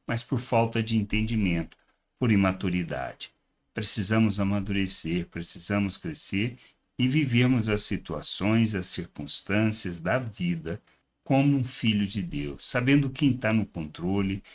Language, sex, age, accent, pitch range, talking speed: Portuguese, male, 60-79, Brazilian, 95-125 Hz, 120 wpm